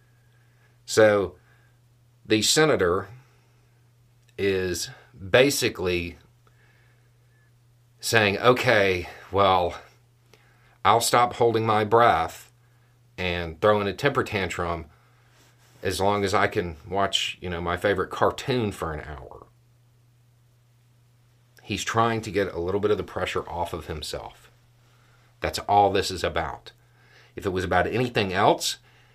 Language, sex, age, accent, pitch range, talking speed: English, male, 40-59, American, 100-120 Hz, 115 wpm